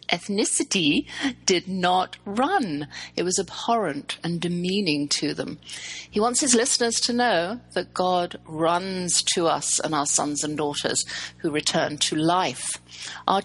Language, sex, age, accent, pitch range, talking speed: English, female, 50-69, British, 160-205 Hz, 145 wpm